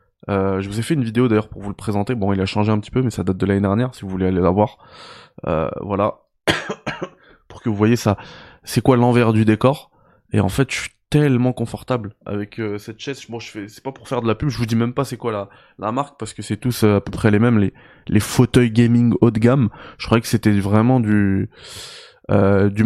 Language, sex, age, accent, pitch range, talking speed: French, male, 20-39, French, 105-140 Hz, 255 wpm